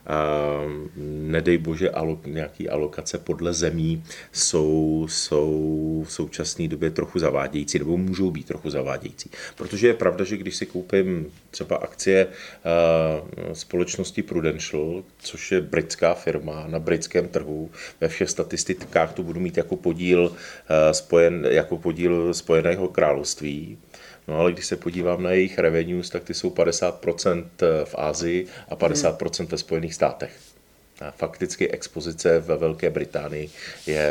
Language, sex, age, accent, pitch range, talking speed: Czech, male, 30-49, native, 80-95 Hz, 130 wpm